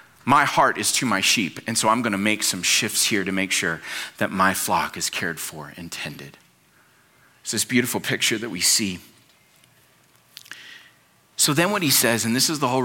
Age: 30-49